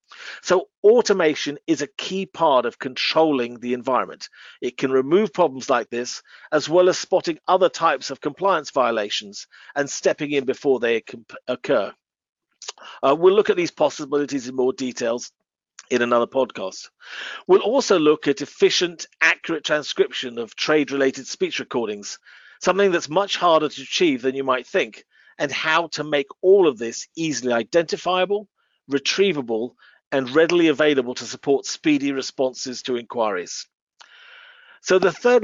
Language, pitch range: English, 130-185 Hz